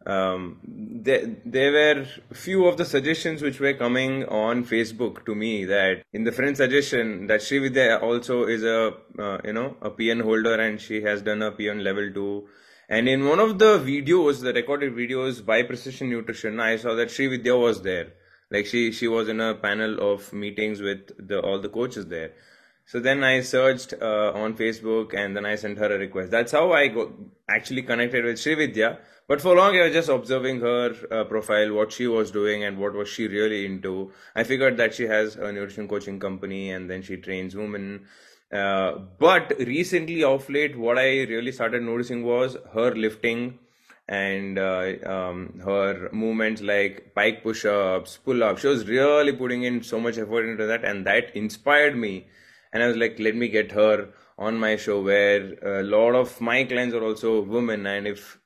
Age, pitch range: 20-39, 105-125 Hz